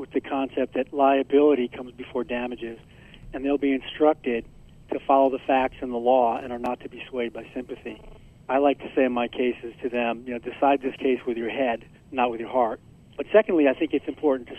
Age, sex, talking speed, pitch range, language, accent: 40-59, male, 225 wpm, 120-140 Hz, English, American